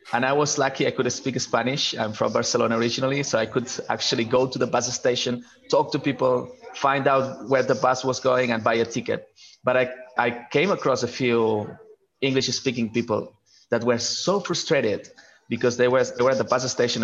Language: English